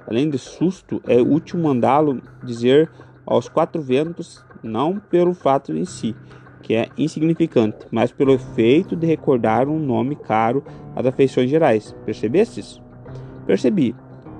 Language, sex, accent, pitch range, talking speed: Portuguese, male, Brazilian, 120-150 Hz, 135 wpm